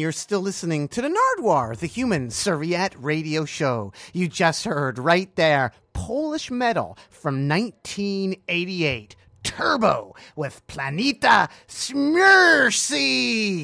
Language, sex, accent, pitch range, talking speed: English, male, American, 130-210 Hz, 105 wpm